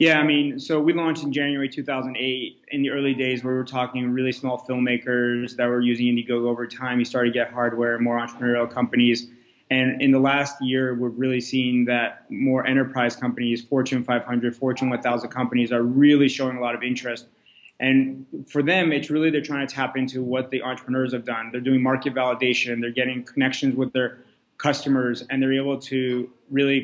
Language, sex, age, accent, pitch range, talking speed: English, male, 20-39, American, 125-140 Hz, 195 wpm